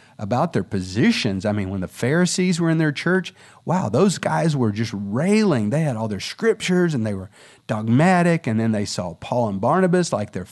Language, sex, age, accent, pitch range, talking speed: English, male, 40-59, American, 105-160 Hz, 205 wpm